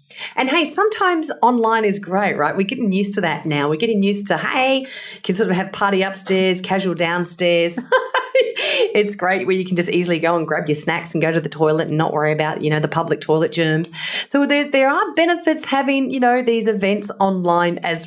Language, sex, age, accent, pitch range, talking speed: English, female, 30-49, Australian, 155-200 Hz, 215 wpm